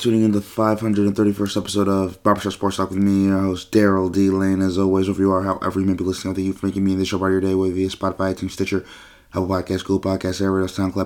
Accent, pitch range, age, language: American, 85-95 Hz, 30-49, English